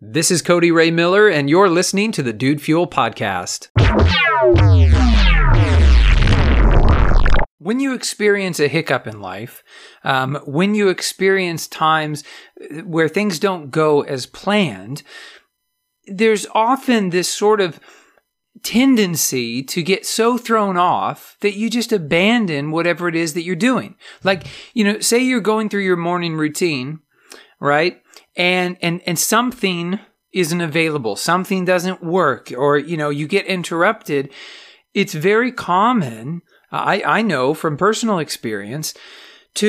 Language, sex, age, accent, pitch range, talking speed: English, male, 40-59, American, 150-205 Hz, 135 wpm